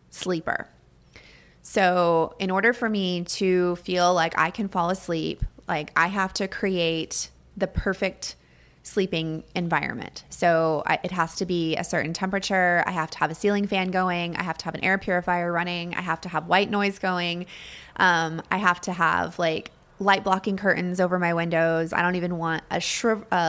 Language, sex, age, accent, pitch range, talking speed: English, female, 20-39, American, 170-195 Hz, 180 wpm